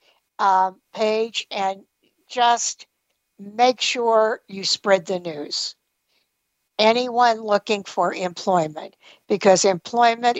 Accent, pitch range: American, 185-235 Hz